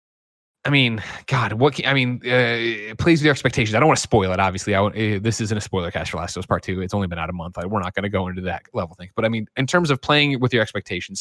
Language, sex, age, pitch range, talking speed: English, male, 20-39, 100-130 Hz, 310 wpm